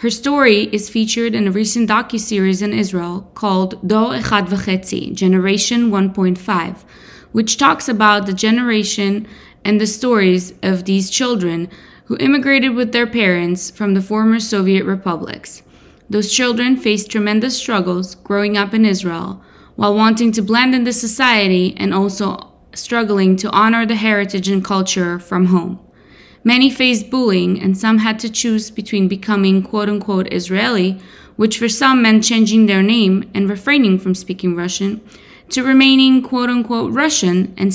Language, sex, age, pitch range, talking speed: English, female, 20-39, 190-230 Hz, 150 wpm